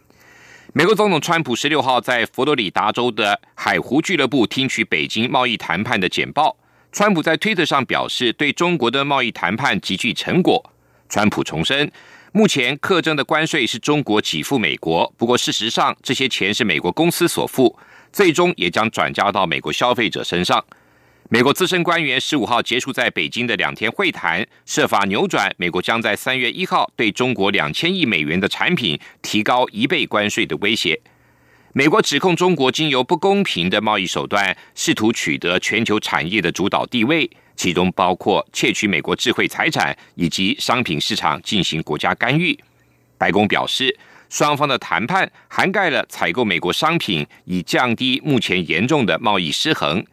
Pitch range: 105-165 Hz